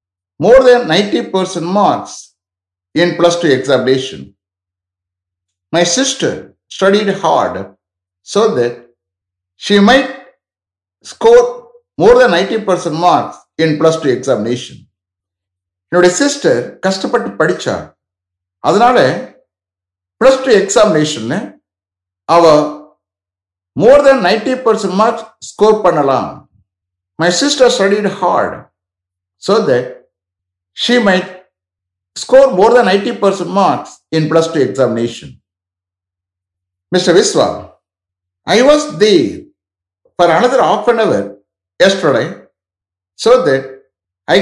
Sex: male